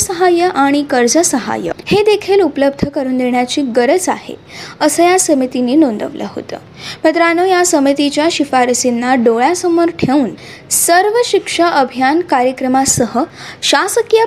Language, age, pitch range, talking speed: Marathi, 20-39, 270-370 Hz, 85 wpm